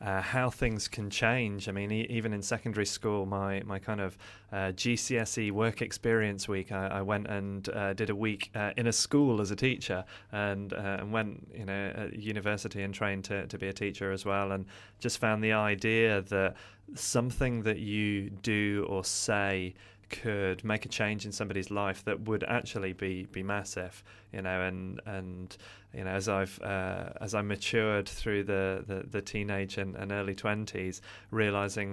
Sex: male